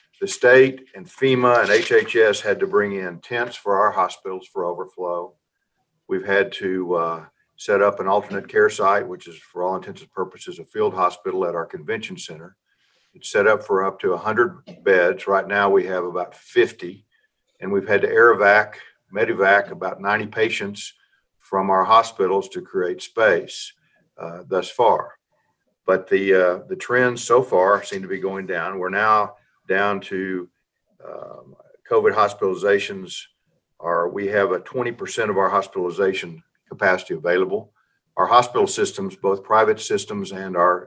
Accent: American